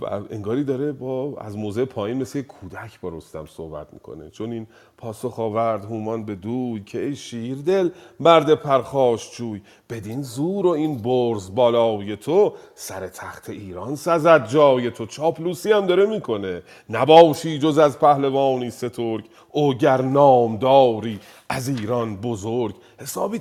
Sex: male